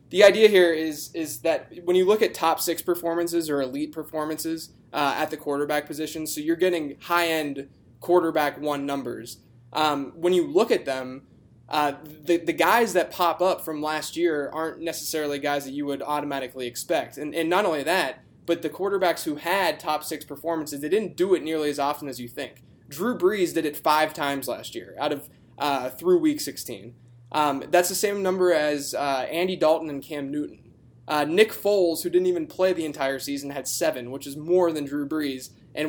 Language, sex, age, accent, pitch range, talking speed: English, male, 20-39, American, 140-170 Hz, 200 wpm